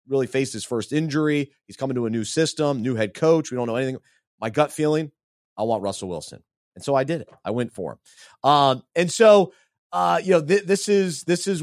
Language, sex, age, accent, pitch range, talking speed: English, male, 30-49, American, 125-155 Hz, 225 wpm